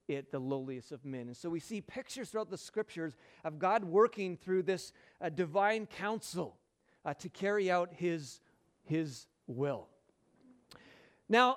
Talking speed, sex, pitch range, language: 150 wpm, male, 170-235 Hz, English